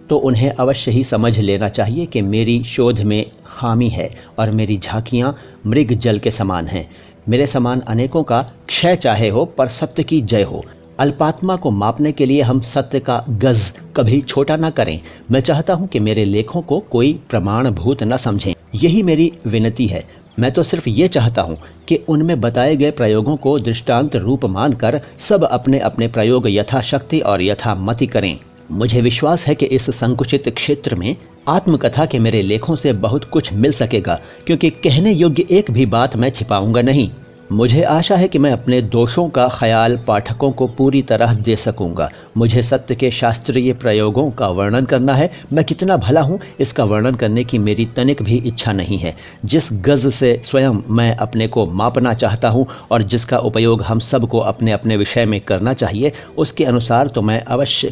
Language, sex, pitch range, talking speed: Hindi, male, 110-140 Hz, 180 wpm